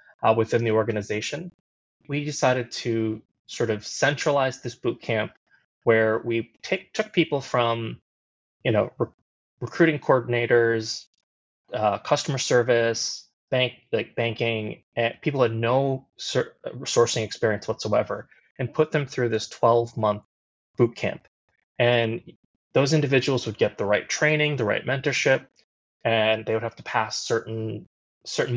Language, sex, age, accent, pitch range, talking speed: English, male, 20-39, American, 110-135 Hz, 135 wpm